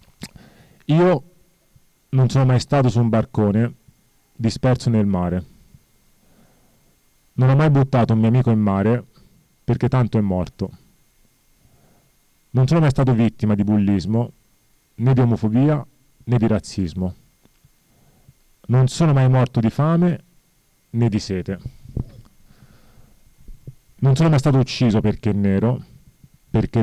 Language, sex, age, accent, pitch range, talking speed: Italian, male, 30-49, native, 110-130 Hz, 125 wpm